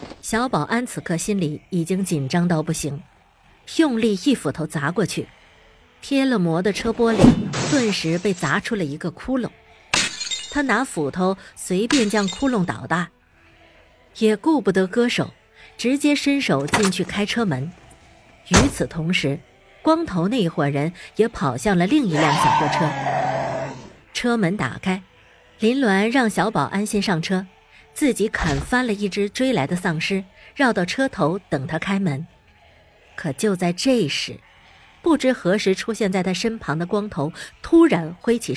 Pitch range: 160-230 Hz